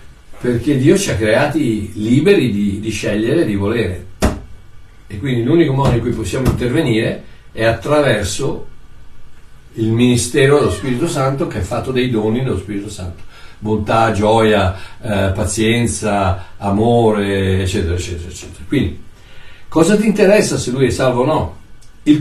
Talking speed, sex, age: 145 wpm, male, 60-79